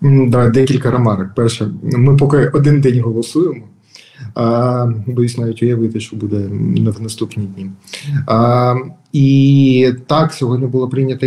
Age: 20-39